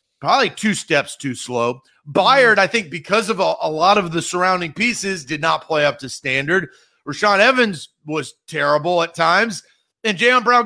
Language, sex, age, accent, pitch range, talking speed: English, male, 40-59, American, 170-240 Hz, 180 wpm